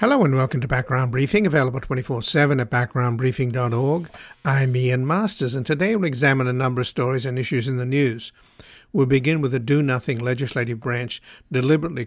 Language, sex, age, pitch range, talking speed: English, male, 60-79, 120-135 Hz, 170 wpm